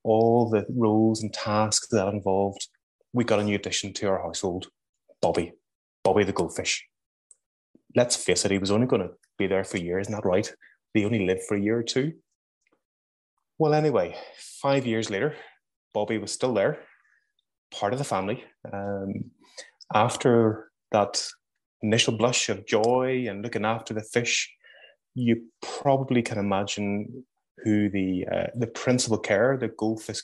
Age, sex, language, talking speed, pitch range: 20-39, male, English, 160 wpm, 100-120 Hz